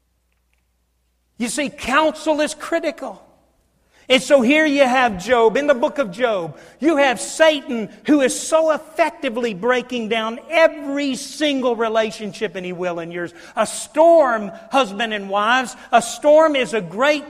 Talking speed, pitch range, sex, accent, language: 150 wpm, 185-280 Hz, male, American, English